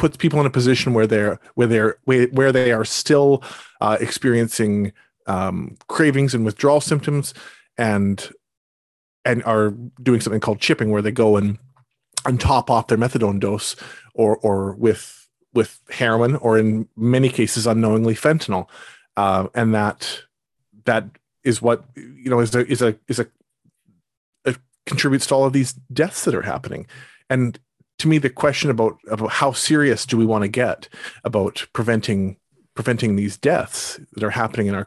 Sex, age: male, 40-59